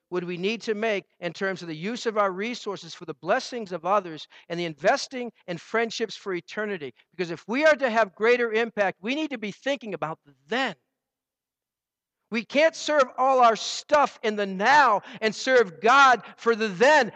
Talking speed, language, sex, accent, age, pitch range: 190 wpm, English, male, American, 50-69, 190-260 Hz